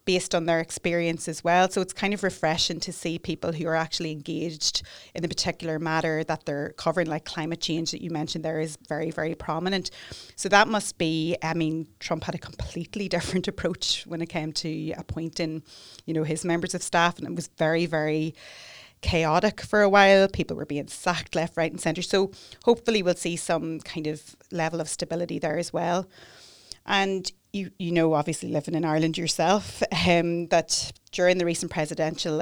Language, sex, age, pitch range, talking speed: English, female, 30-49, 160-180 Hz, 195 wpm